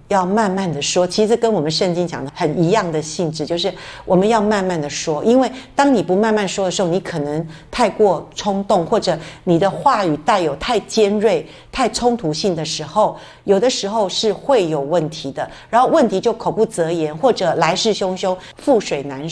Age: 50-69